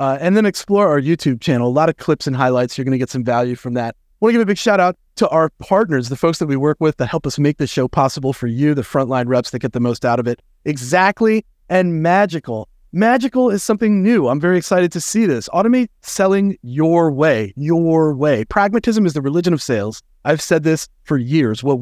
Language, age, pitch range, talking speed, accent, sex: English, 30-49, 125-180 Hz, 240 wpm, American, male